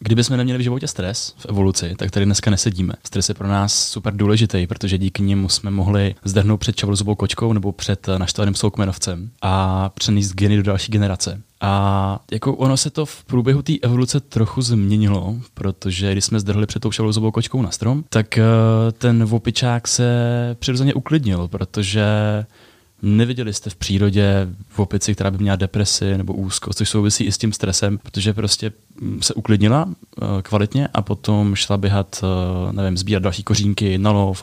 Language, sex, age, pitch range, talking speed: Czech, male, 20-39, 95-110 Hz, 165 wpm